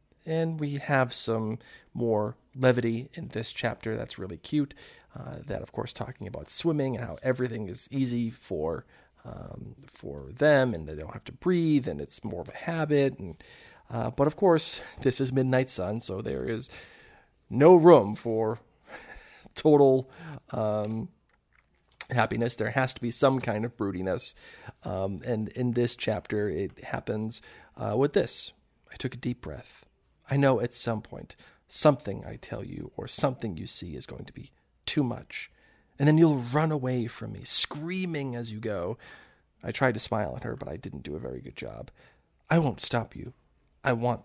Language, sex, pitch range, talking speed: English, male, 110-140 Hz, 175 wpm